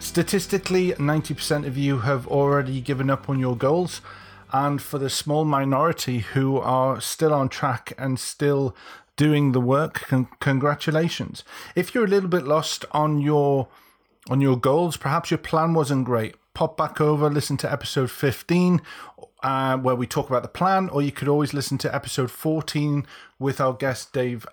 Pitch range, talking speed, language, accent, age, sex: 130-150 Hz, 170 wpm, English, British, 30-49, male